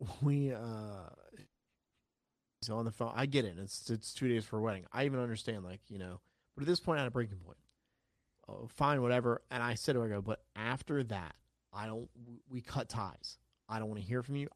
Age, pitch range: 30-49, 105-130 Hz